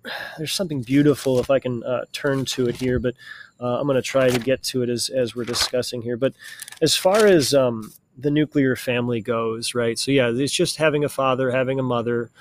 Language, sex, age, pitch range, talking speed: English, male, 30-49, 125-145 Hz, 225 wpm